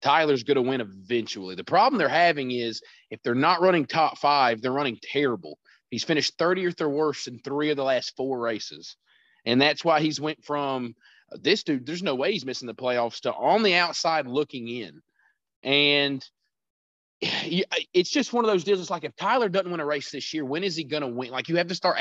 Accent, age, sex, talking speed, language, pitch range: American, 30-49, male, 215 wpm, English, 125-170 Hz